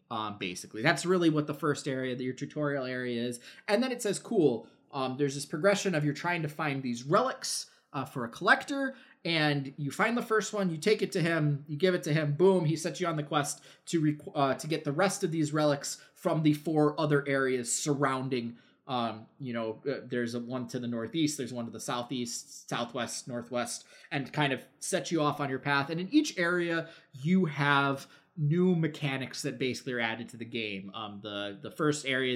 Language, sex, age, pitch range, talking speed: English, male, 20-39, 120-165 Hz, 220 wpm